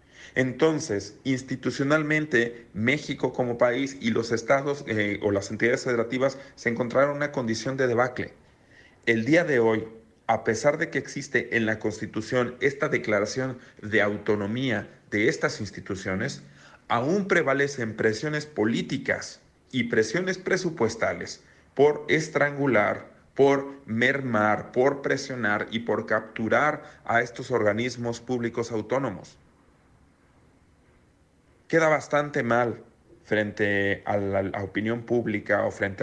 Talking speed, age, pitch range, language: 115 wpm, 40-59, 105-130 Hz, Spanish